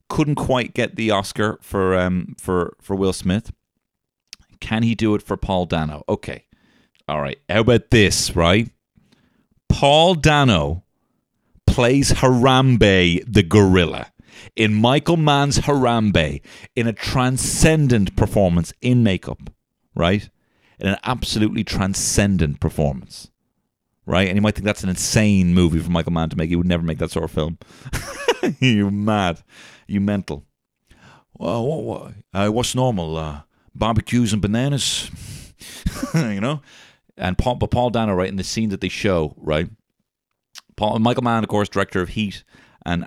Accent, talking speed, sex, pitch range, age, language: British, 150 wpm, male, 80-115 Hz, 40-59, English